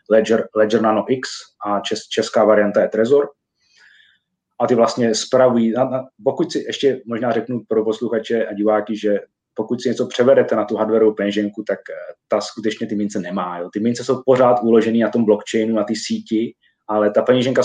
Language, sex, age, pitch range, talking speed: Czech, male, 30-49, 100-115 Hz, 180 wpm